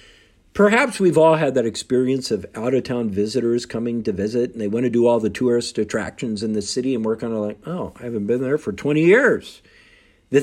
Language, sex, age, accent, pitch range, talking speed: English, male, 50-69, American, 115-185 Hz, 220 wpm